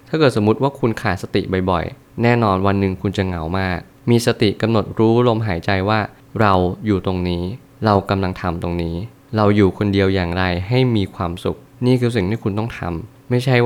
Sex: male